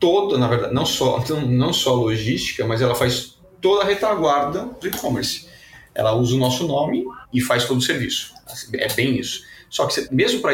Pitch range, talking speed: 120-150 Hz, 180 wpm